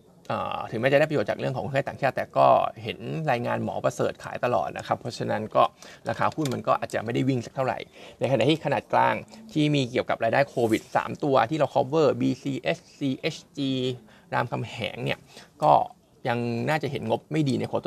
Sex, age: male, 20-39